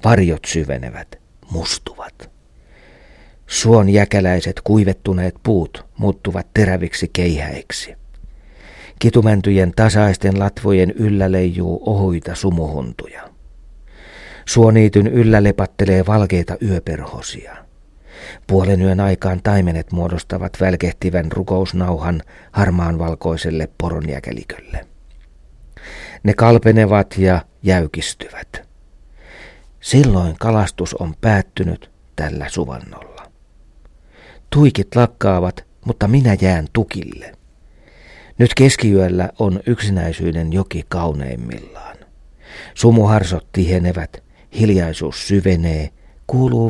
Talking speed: 75 wpm